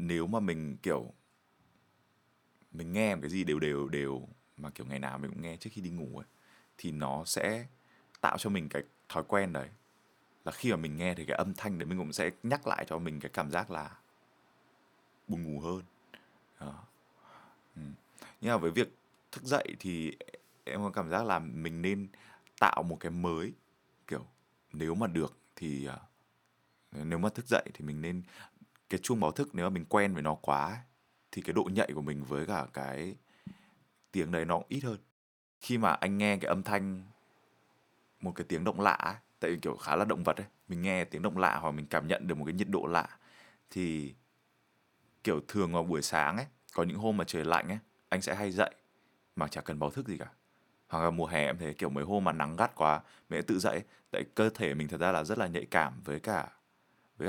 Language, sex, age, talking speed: Vietnamese, male, 20-39, 210 wpm